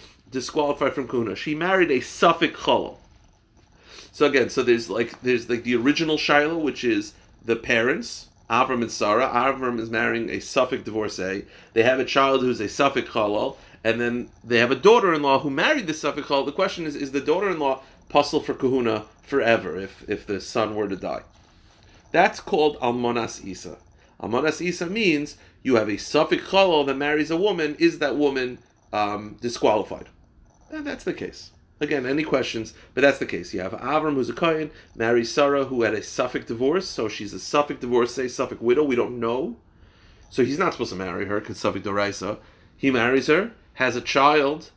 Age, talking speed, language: 40-59, 190 wpm, English